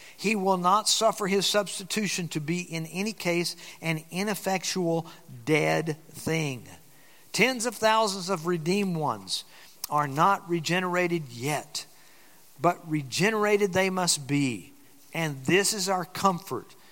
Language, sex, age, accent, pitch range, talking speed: English, male, 50-69, American, 155-195 Hz, 125 wpm